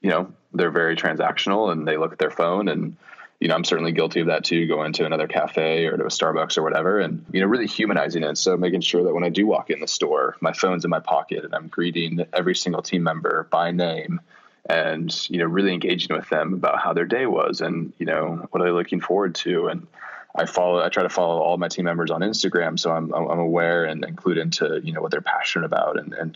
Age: 20-39